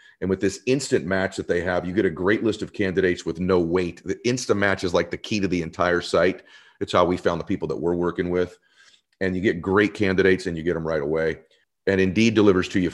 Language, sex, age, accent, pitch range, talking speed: English, male, 40-59, American, 90-110 Hz, 255 wpm